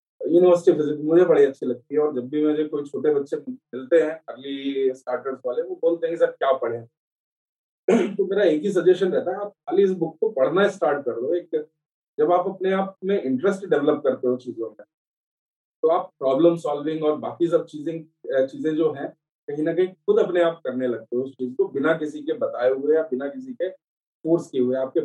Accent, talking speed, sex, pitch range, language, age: native, 205 wpm, male, 135-180 Hz, Hindi, 40-59